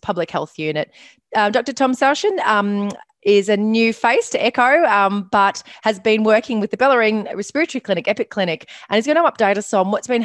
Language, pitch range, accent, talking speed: English, 165-215 Hz, Australian, 205 wpm